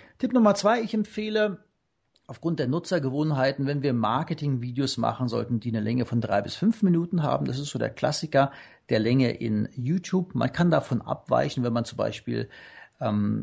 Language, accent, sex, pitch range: German, German, male, 125-165 Hz